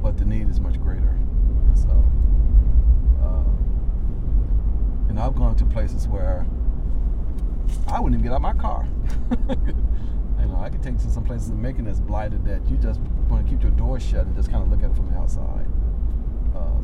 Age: 40-59